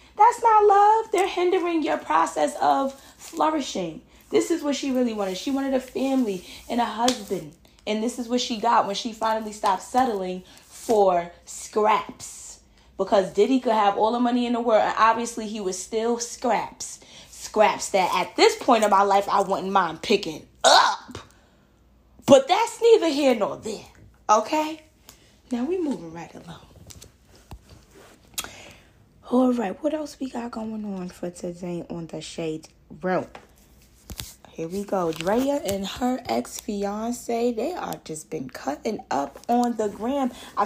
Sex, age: female, 10-29